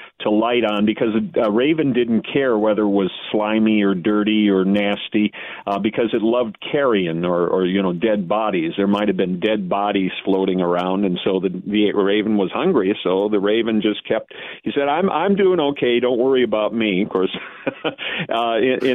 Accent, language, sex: American, English, male